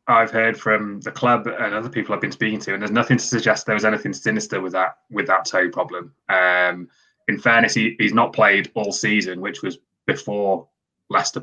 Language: English